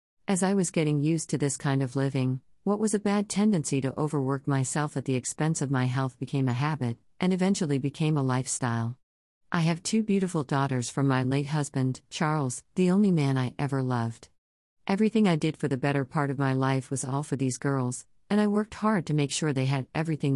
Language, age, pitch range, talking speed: English, 50-69, 130-165 Hz, 215 wpm